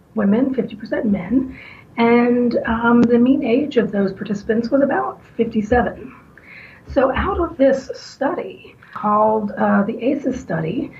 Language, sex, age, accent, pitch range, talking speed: English, female, 40-59, American, 195-240 Hz, 130 wpm